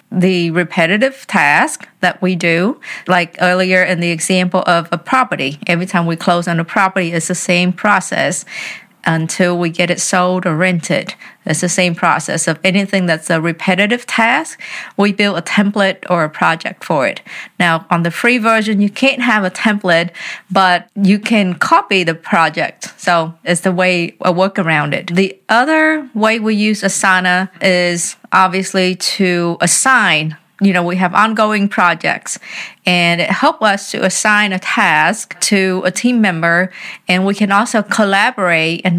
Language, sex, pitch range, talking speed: English, female, 175-210 Hz, 170 wpm